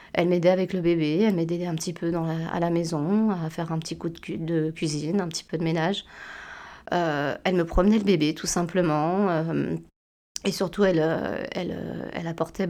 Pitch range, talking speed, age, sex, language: 165-185 Hz, 210 wpm, 20-39, female, French